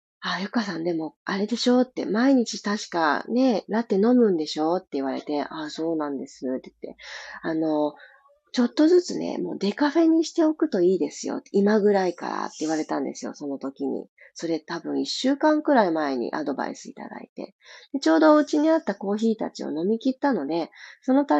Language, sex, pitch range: Japanese, female, 170-275 Hz